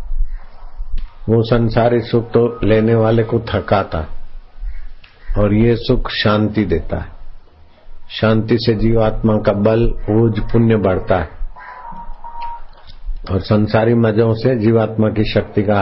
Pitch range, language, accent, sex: 95-115 Hz, Hindi, native, male